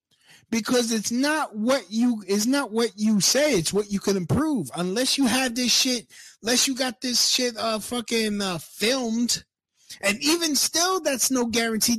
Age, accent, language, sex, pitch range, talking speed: 20-39, American, English, male, 170-240 Hz, 170 wpm